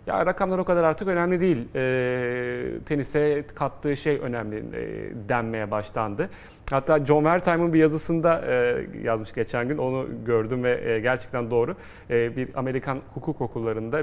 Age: 30-49